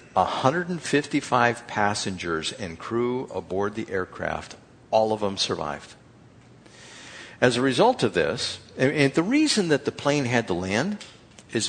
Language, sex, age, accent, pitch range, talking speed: English, male, 60-79, American, 105-140 Hz, 135 wpm